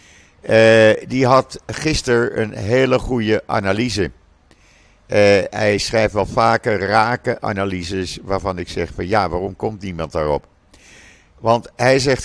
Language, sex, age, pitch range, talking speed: Dutch, male, 50-69, 85-110 Hz, 130 wpm